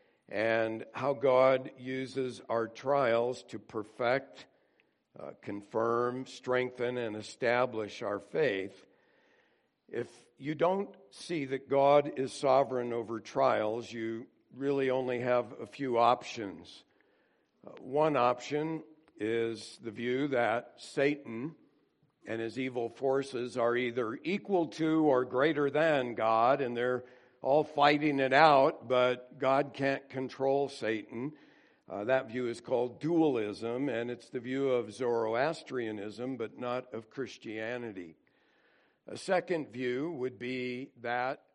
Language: English